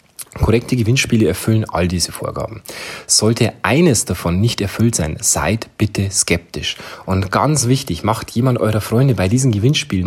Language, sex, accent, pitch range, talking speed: German, male, German, 95-120 Hz, 150 wpm